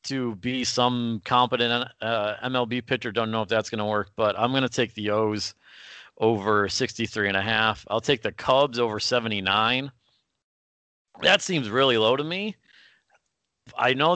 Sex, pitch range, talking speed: male, 100-120 Hz, 170 wpm